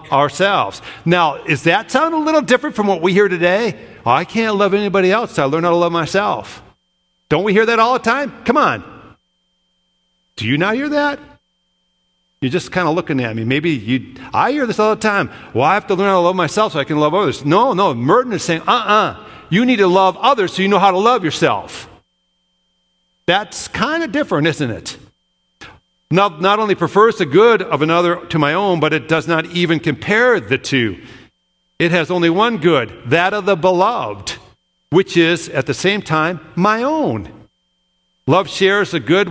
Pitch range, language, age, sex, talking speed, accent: 120-195 Hz, English, 50-69, male, 205 wpm, American